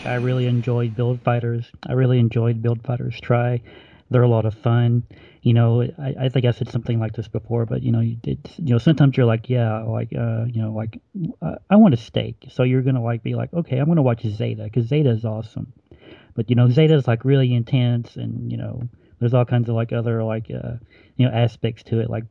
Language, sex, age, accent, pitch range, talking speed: English, male, 40-59, American, 115-135 Hz, 235 wpm